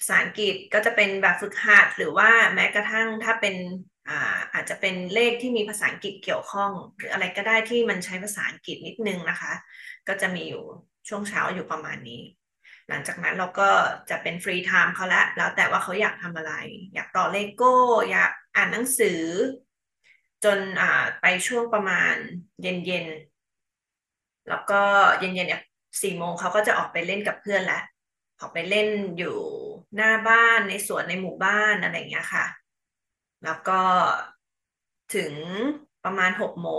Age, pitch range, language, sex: 20-39, 185-220 Hz, Thai, female